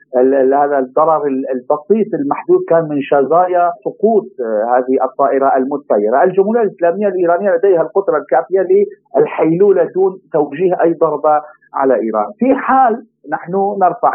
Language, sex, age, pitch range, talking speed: Arabic, male, 50-69, 170-245 Hz, 120 wpm